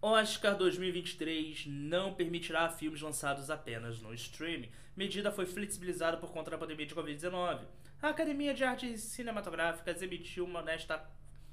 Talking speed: 135 wpm